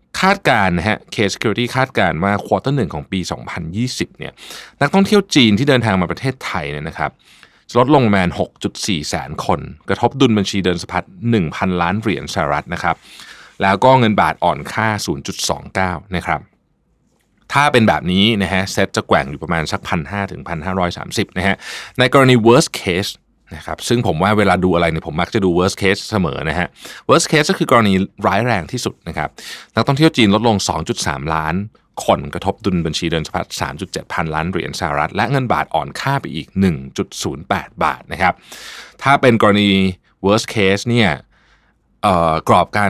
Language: Thai